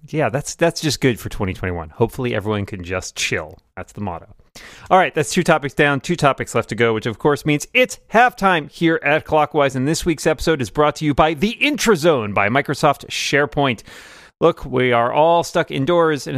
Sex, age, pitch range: male, 30-49, 110-150 Hz